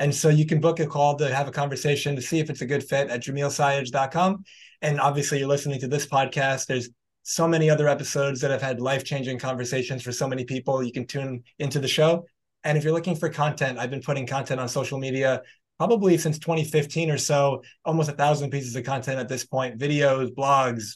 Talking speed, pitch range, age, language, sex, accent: 220 wpm, 130-150 Hz, 20-39, English, male, American